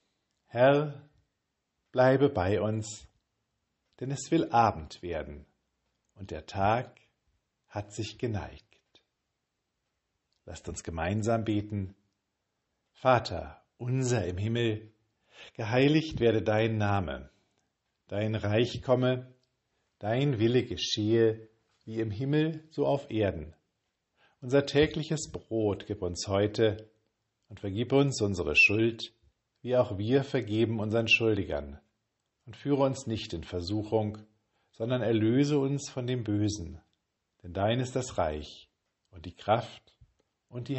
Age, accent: 50-69, German